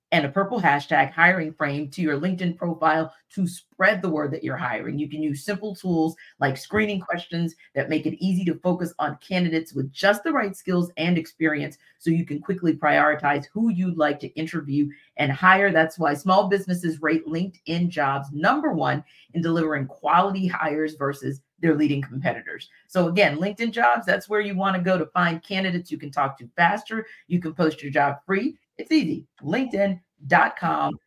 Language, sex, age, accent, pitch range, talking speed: English, female, 40-59, American, 150-190 Hz, 185 wpm